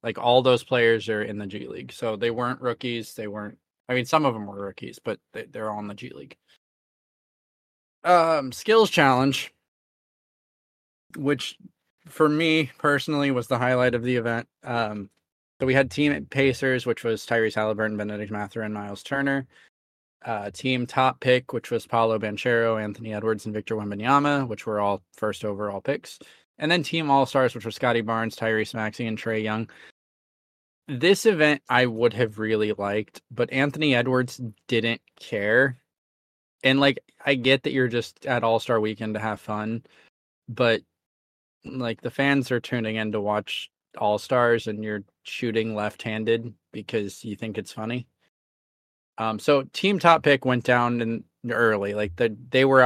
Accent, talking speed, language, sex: American, 170 wpm, English, male